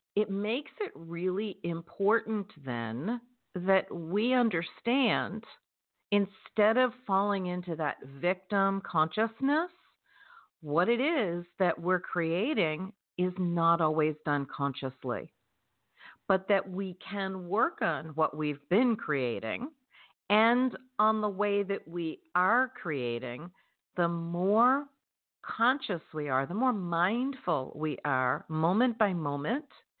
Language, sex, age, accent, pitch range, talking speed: English, female, 50-69, American, 170-250 Hz, 115 wpm